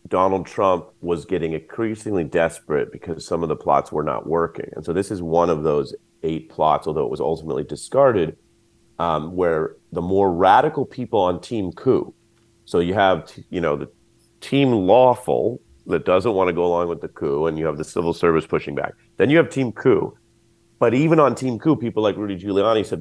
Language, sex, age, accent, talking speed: English, male, 30-49, American, 205 wpm